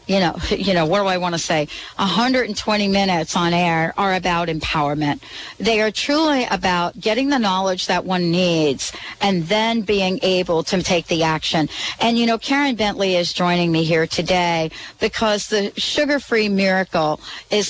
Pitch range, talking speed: 170-225 Hz, 170 wpm